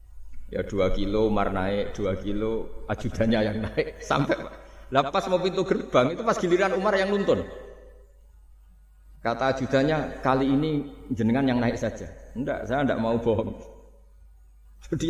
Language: Indonesian